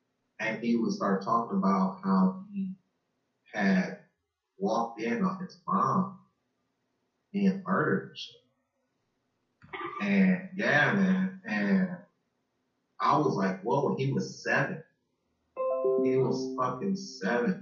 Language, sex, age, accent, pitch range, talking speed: English, male, 30-49, American, 115-195 Hz, 110 wpm